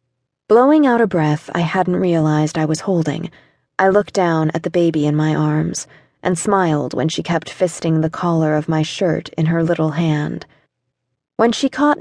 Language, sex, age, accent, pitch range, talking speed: English, female, 20-39, American, 155-195 Hz, 185 wpm